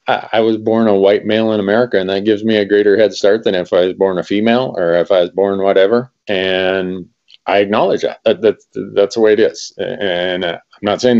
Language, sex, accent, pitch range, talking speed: English, male, American, 95-125 Hz, 225 wpm